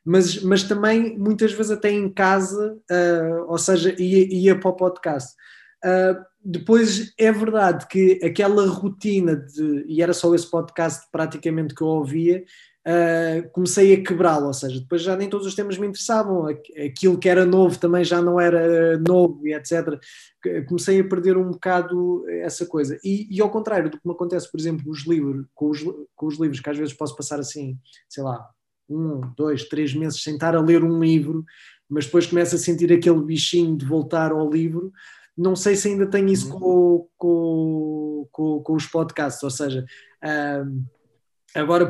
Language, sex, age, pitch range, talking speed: Portuguese, male, 20-39, 150-185 Hz, 170 wpm